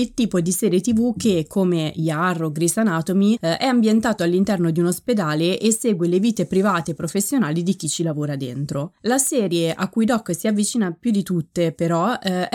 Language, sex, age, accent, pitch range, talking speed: Italian, female, 20-39, native, 170-225 Hz, 190 wpm